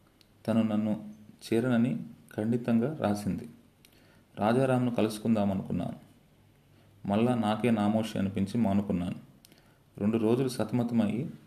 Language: Telugu